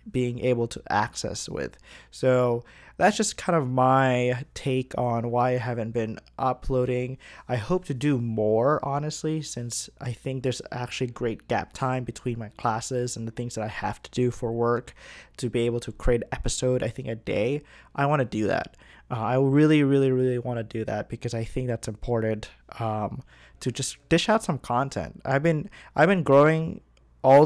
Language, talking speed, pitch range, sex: English, 190 wpm, 120-145 Hz, male